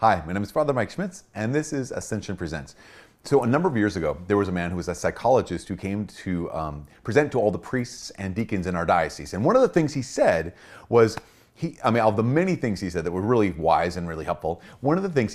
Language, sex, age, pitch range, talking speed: English, male, 30-49, 105-145 Hz, 265 wpm